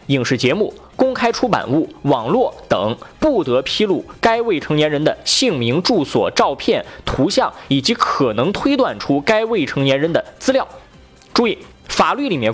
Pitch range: 155-230 Hz